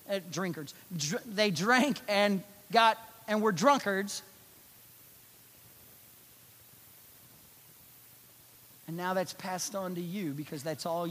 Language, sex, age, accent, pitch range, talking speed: English, male, 40-59, American, 155-220 Hz, 95 wpm